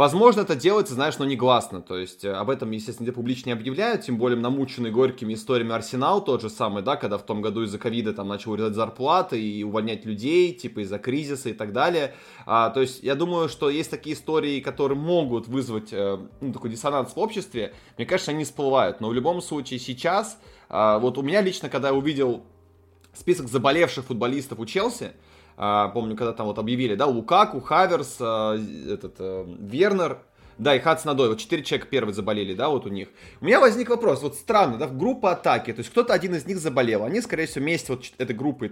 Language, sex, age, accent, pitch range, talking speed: Russian, male, 20-39, native, 115-155 Hz, 210 wpm